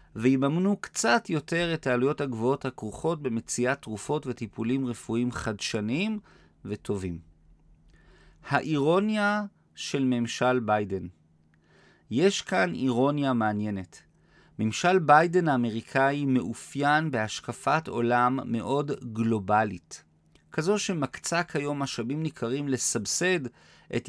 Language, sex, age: Hebrew, male, 40-59